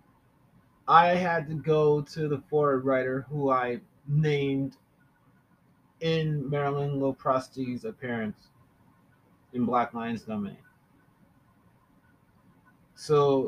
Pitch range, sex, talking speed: 125-150 Hz, male, 90 wpm